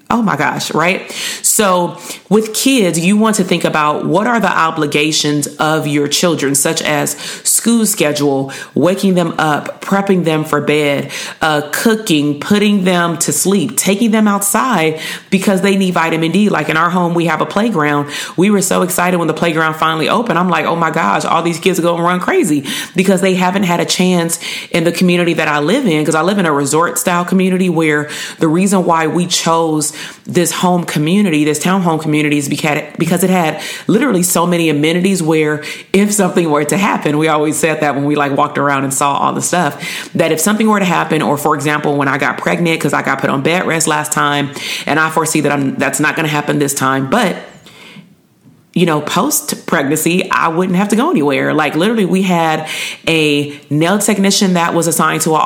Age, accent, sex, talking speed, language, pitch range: 30-49, American, female, 205 wpm, English, 150-185 Hz